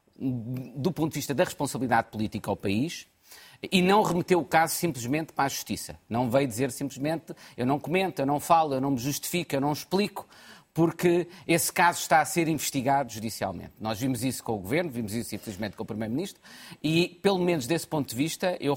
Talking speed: 200 wpm